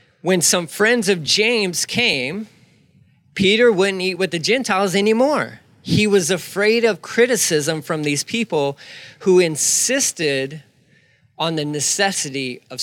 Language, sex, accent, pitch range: English, male, American, 150-210 Hz